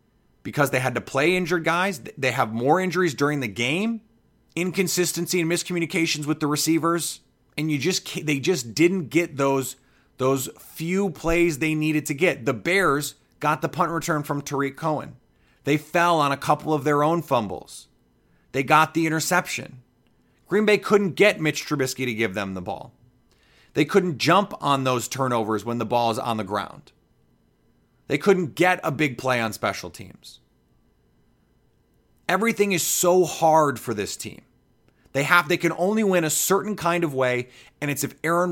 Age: 30-49